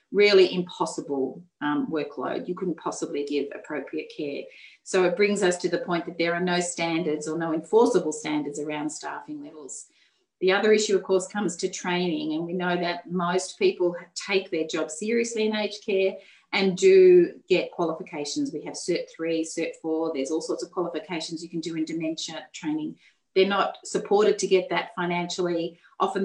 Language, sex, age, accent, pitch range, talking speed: English, female, 30-49, Australian, 165-225 Hz, 180 wpm